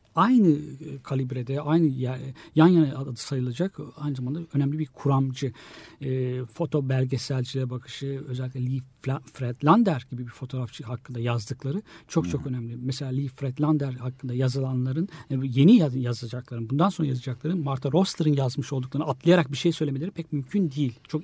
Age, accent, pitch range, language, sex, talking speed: 60-79, native, 130-165 Hz, Turkish, male, 140 wpm